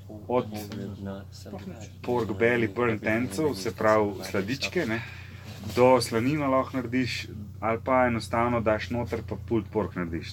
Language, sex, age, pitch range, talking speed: English, male, 30-49, 100-130 Hz, 130 wpm